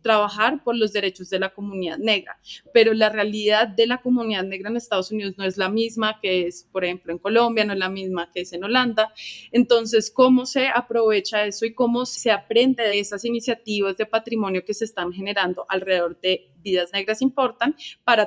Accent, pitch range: Colombian, 195-230 Hz